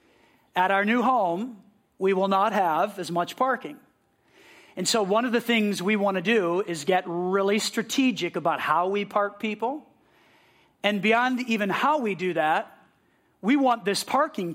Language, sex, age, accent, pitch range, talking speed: English, male, 40-59, American, 180-225 Hz, 170 wpm